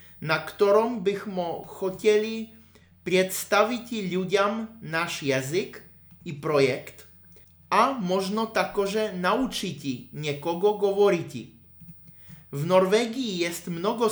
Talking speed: 85 wpm